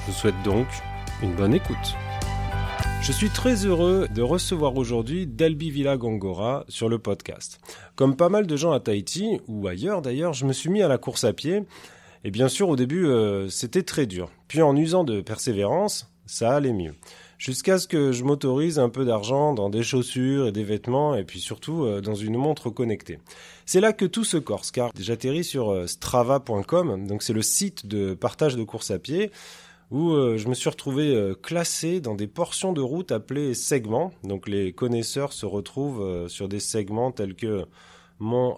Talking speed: 195 wpm